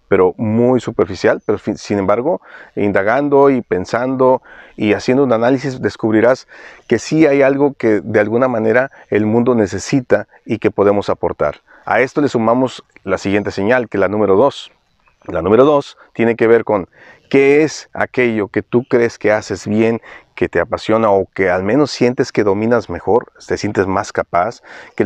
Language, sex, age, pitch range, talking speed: Spanish, male, 40-59, 105-130 Hz, 175 wpm